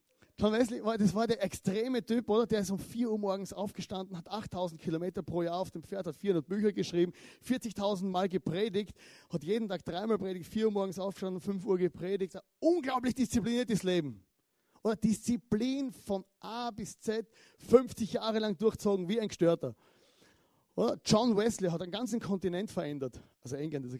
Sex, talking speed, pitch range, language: male, 175 wpm, 175-225 Hz, German